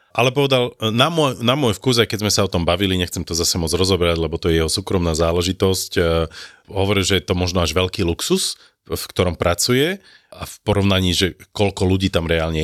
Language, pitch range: Slovak, 80-100 Hz